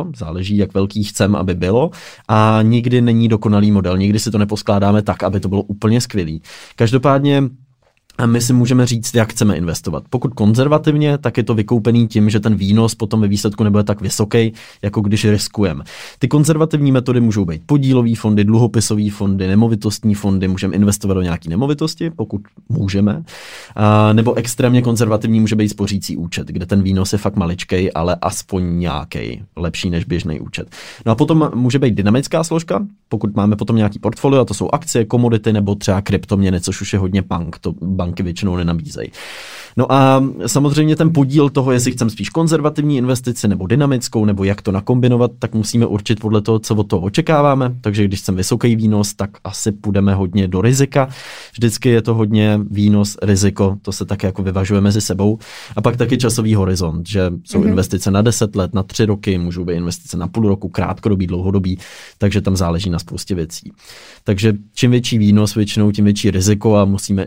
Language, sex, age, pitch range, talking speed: Czech, male, 20-39, 95-120 Hz, 185 wpm